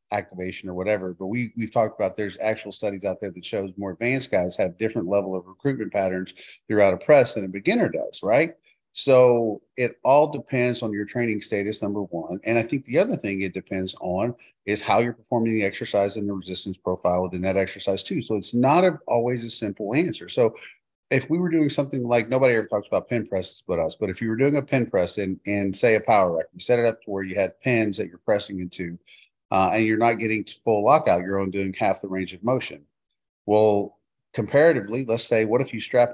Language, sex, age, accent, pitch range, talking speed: English, male, 40-59, American, 95-120 Hz, 225 wpm